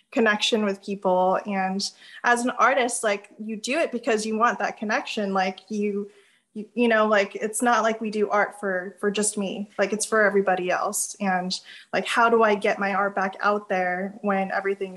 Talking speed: 200 wpm